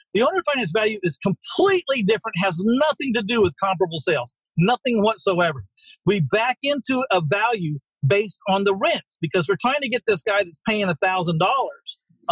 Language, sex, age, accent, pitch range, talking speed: English, male, 50-69, American, 190-245 Hz, 170 wpm